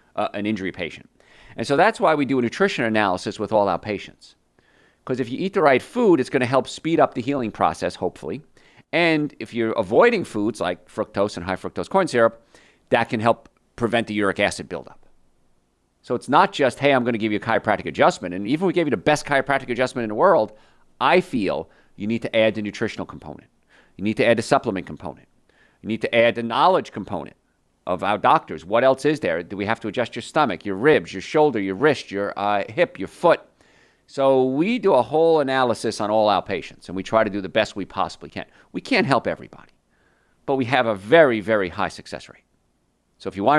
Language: English